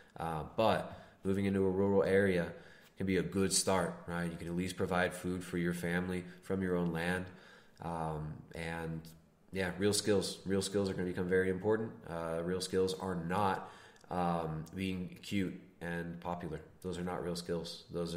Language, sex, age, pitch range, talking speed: English, male, 20-39, 85-95 Hz, 180 wpm